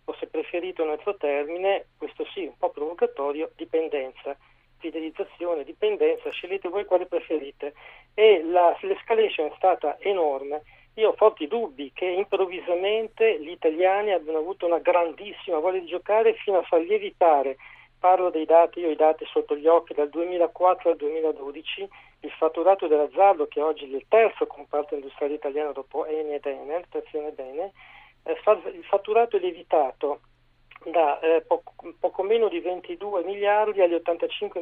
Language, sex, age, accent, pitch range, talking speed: Italian, male, 40-59, native, 160-215 Hz, 155 wpm